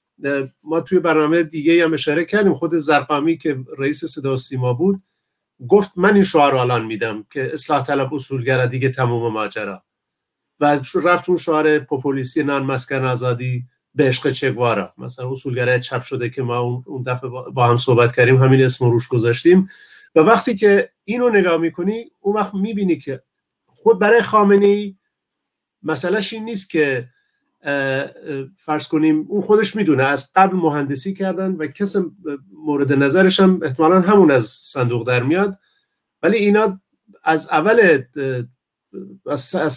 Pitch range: 135-185 Hz